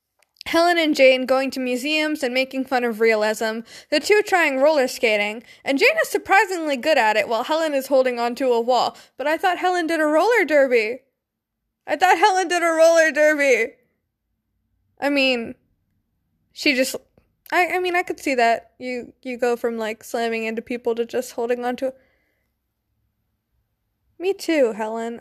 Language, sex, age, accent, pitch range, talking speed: English, female, 20-39, American, 245-310 Hz, 170 wpm